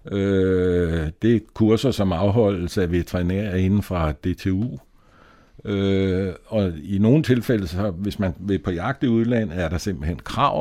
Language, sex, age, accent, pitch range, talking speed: Danish, male, 60-79, native, 90-110 Hz, 160 wpm